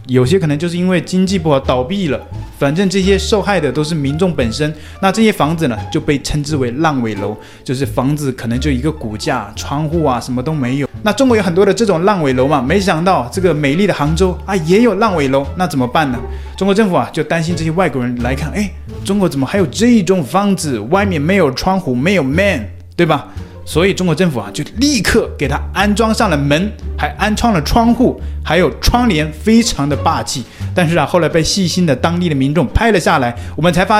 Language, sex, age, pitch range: Chinese, male, 20-39, 125-190 Hz